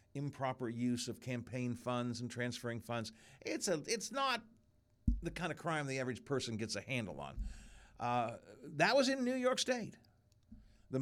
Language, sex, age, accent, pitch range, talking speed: English, male, 50-69, American, 120-195 Hz, 170 wpm